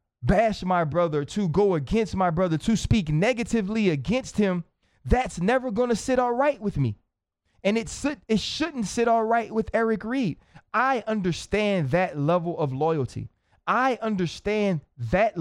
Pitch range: 165-230 Hz